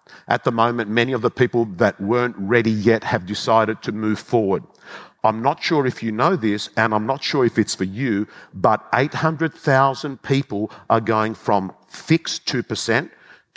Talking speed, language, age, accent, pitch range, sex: 175 wpm, English, 50-69, Australian, 110-125 Hz, male